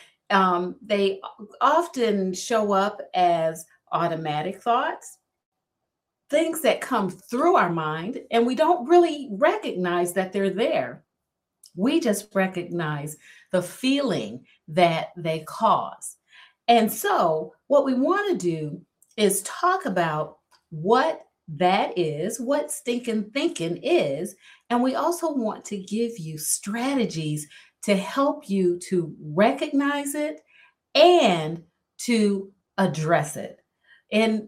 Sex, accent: female, American